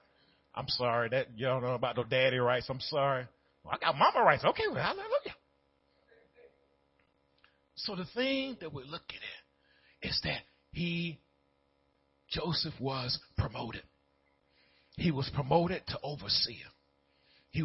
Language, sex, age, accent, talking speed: English, male, 40-59, American, 135 wpm